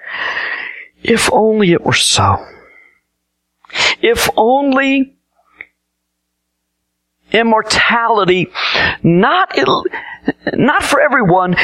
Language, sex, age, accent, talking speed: English, male, 50-69, American, 60 wpm